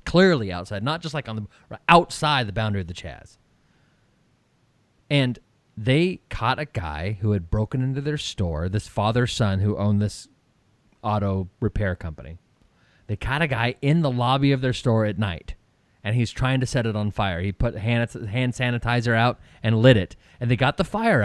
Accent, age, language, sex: American, 30-49, English, male